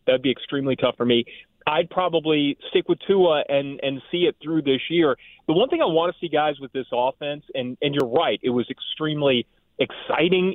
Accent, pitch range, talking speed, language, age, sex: American, 130-170 Hz, 210 wpm, English, 30-49, male